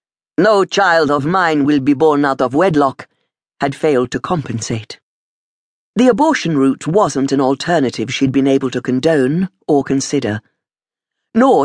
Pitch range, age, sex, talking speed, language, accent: 130-185 Hz, 50-69, female, 145 wpm, English, British